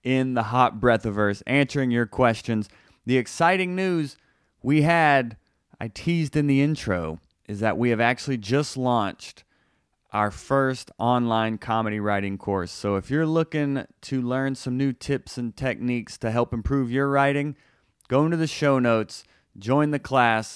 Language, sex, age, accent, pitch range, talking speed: English, male, 30-49, American, 105-135 Hz, 160 wpm